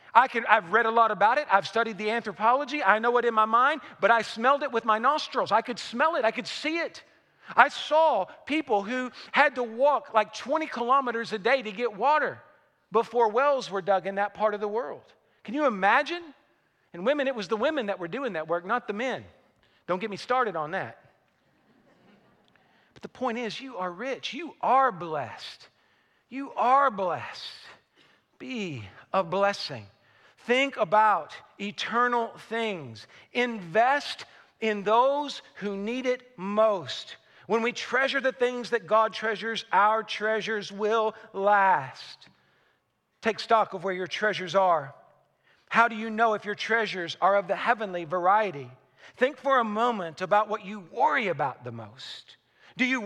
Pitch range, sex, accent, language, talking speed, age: 205-250 Hz, male, American, English, 170 wpm, 40-59